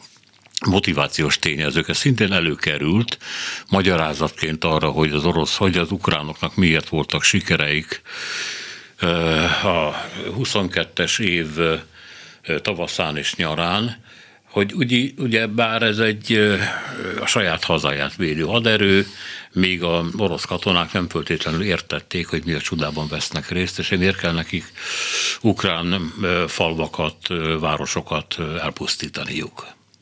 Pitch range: 80-100 Hz